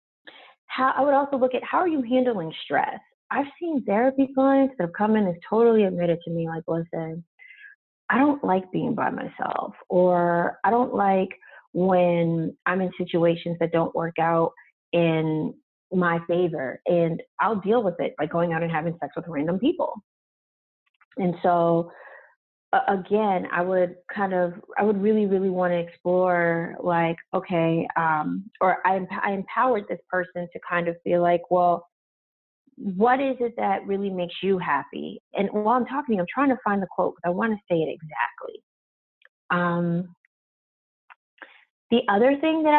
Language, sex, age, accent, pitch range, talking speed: English, female, 30-49, American, 175-250 Hz, 165 wpm